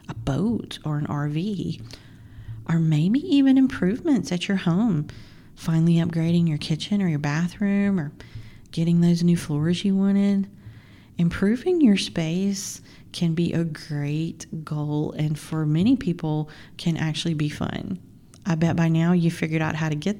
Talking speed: 155 wpm